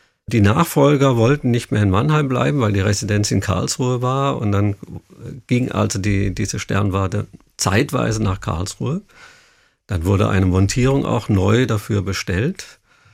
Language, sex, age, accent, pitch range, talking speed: German, male, 50-69, German, 100-120 Hz, 145 wpm